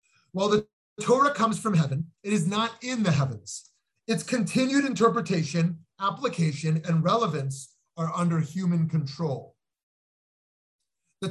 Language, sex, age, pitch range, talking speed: English, male, 30-49, 160-220 Hz, 120 wpm